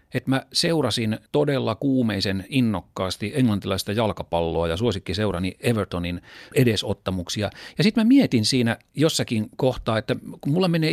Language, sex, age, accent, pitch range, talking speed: Finnish, male, 40-59, native, 100-130 Hz, 125 wpm